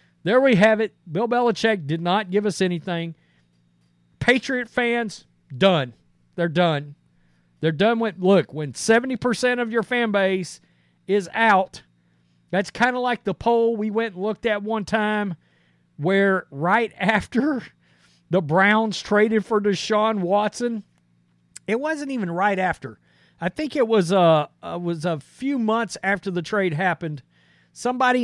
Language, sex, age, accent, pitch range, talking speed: English, male, 40-59, American, 165-220 Hz, 150 wpm